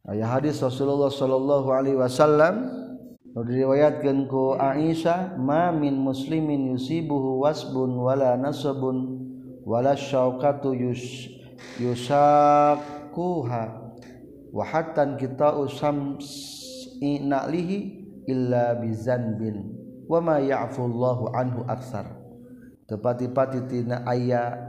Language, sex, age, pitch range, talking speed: Indonesian, male, 50-69, 120-145 Hz, 85 wpm